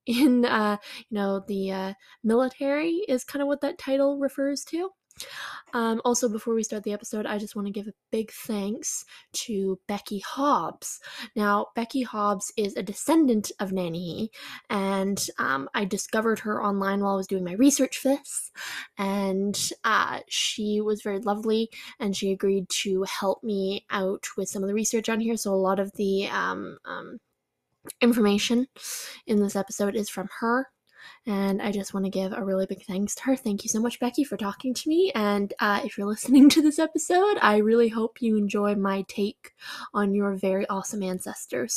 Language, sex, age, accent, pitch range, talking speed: English, female, 10-29, American, 200-240 Hz, 185 wpm